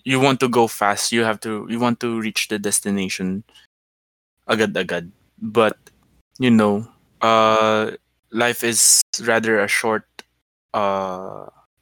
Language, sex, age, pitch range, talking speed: Filipino, male, 20-39, 100-120 Hz, 130 wpm